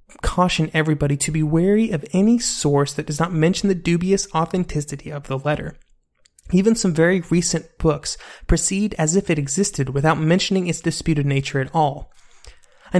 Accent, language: American, English